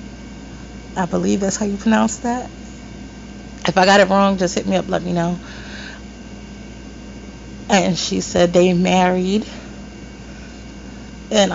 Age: 30-49